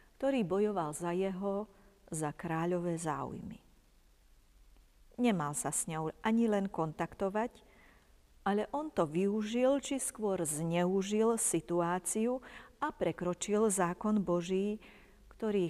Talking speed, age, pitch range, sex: 105 wpm, 40-59, 165-205 Hz, female